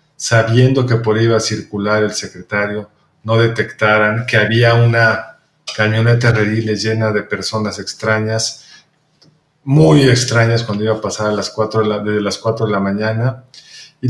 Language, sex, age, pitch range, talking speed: Spanish, male, 40-59, 105-125 Hz, 160 wpm